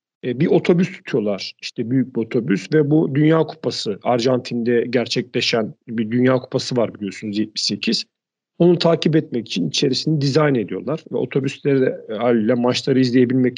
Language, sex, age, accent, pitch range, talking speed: Turkish, male, 40-59, native, 120-160 Hz, 135 wpm